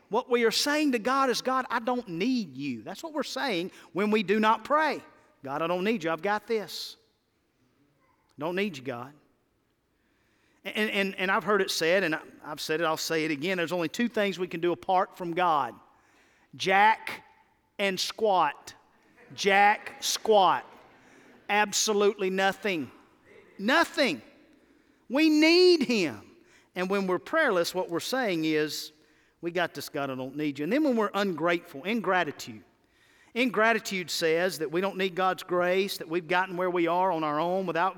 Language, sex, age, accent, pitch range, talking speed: English, male, 40-59, American, 160-230 Hz, 170 wpm